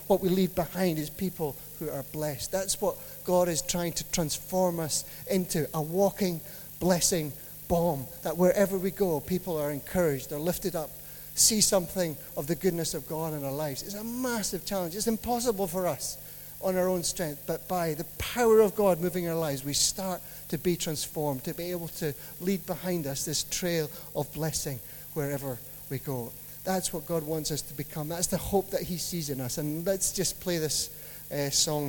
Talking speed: 195 wpm